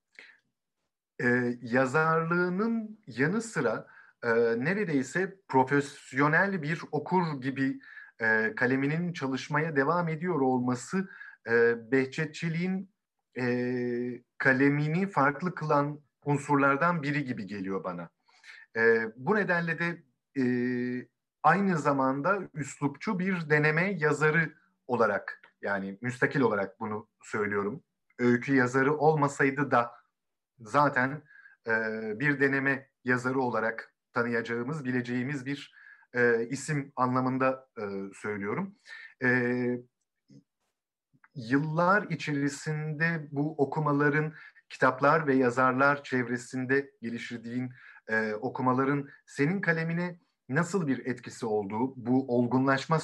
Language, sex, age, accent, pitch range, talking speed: Turkish, male, 50-69, native, 120-155 Hz, 95 wpm